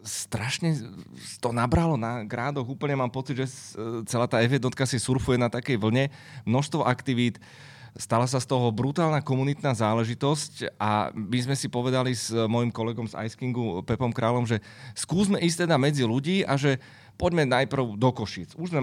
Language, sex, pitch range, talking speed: Slovak, male, 110-140 Hz, 165 wpm